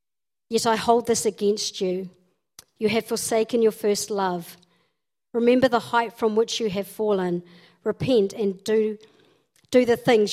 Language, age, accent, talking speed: English, 50-69, Australian, 150 wpm